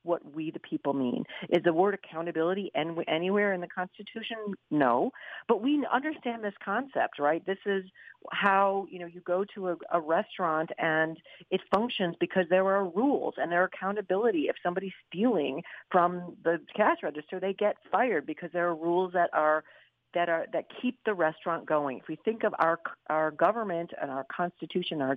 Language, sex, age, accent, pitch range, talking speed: English, female, 50-69, American, 160-210 Hz, 180 wpm